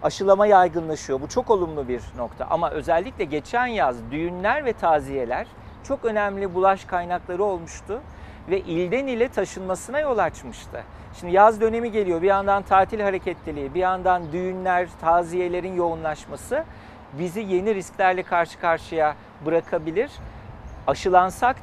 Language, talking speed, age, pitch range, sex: Turkish, 125 wpm, 50-69, 165-200 Hz, male